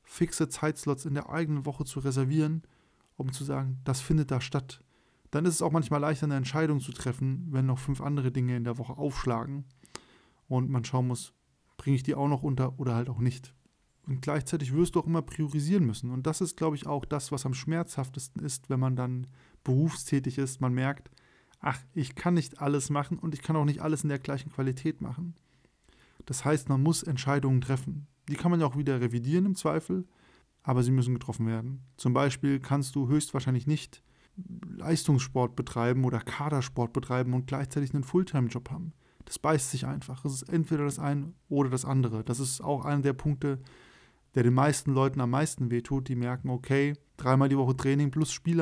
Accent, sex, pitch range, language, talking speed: German, male, 130-150 Hz, German, 200 wpm